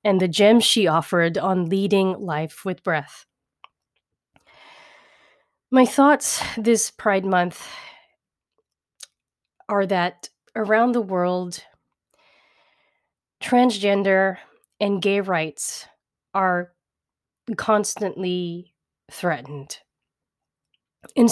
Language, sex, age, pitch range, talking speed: English, female, 30-49, 170-210 Hz, 80 wpm